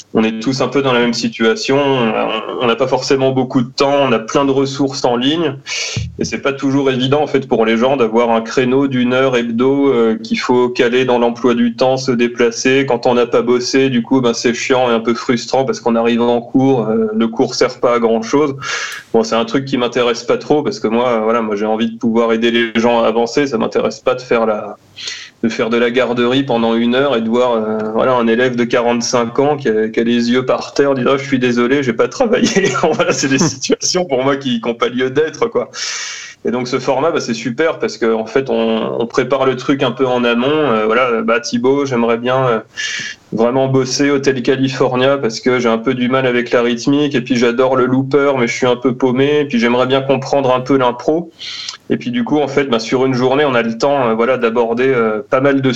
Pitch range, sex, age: 120-135 Hz, male, 20-39